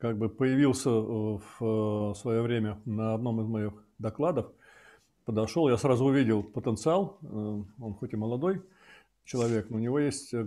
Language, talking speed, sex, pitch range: Russian, 145 wpm, male, 115-145 Hz